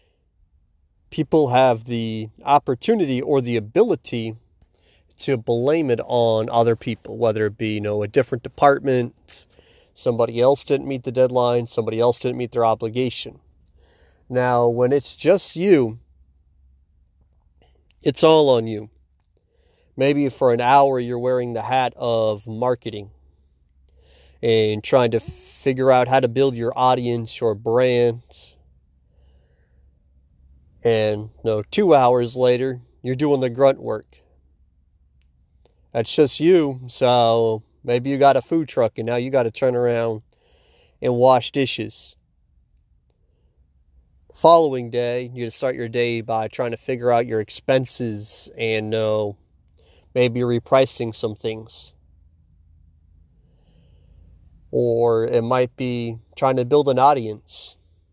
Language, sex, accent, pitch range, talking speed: English, male, American, 80-125 Hz, 130 wpm